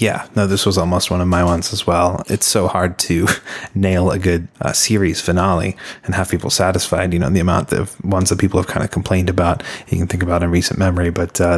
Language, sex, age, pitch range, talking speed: English, male, 20-39, 90-100 Hz, 245 wpm